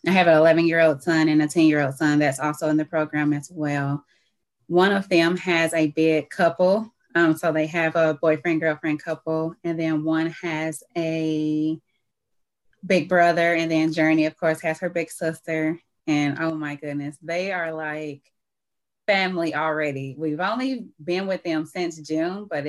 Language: English